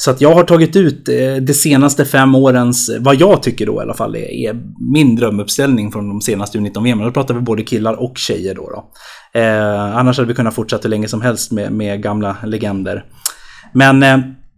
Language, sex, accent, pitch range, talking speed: Swedish, male, native, 115-135 Hz, 205 wpm